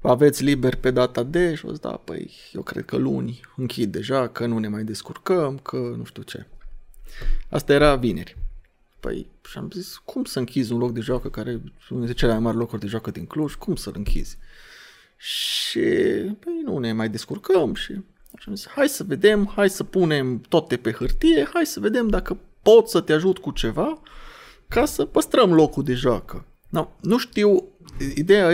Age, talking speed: 20-39, 180 wpm